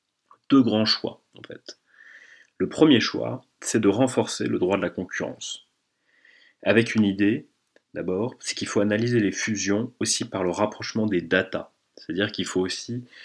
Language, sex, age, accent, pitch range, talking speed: French, male, 30-49, French, 95-110 Hz, 165 wpm